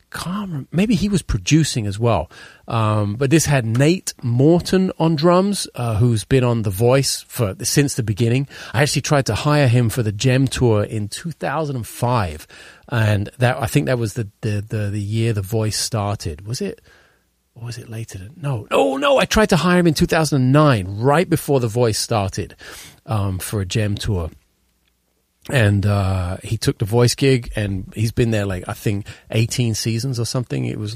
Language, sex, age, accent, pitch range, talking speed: English, male, 30-49, British, 110-135 Hz, 190 wpm